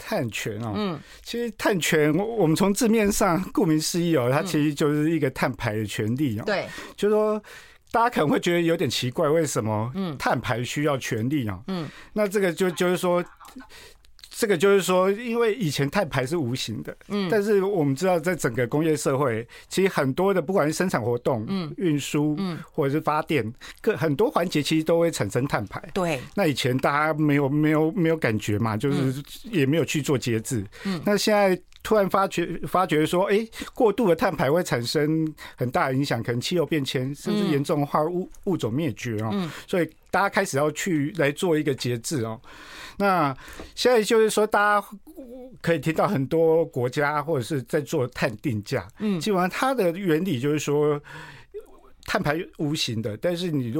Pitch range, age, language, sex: 145-190 Hz, 50-69, Chinese, male